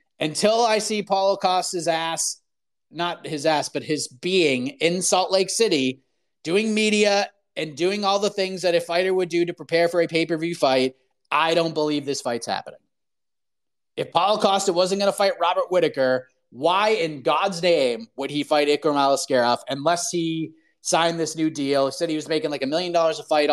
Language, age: English, 30-49